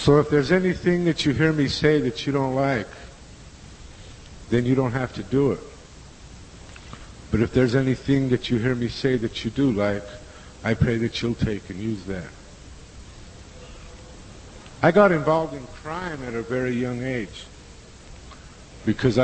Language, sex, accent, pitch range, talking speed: English, male, American, 100-125 Hz, 160 wpm